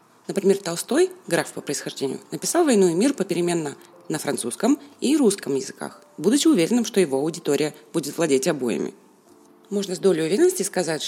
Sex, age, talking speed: female, 30-49, 150 wpm